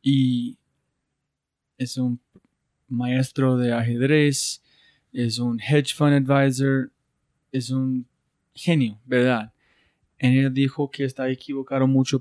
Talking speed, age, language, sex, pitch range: 110 wpm, 20-39, Spanish, male, 125-135 Hz